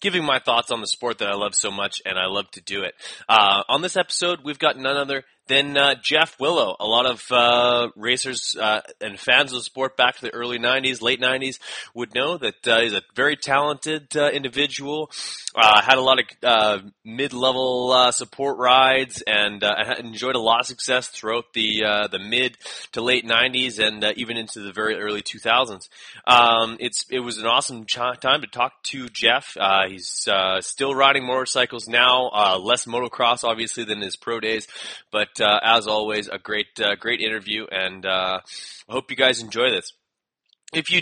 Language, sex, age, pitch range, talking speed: English, male, 20-39, 110-130 Hz, 200 wpm